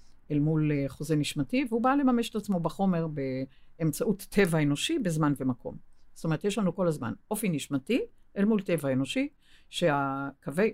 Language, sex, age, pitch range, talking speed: Hebrew, female, 50-69, 140-205 Hz, 155 wpm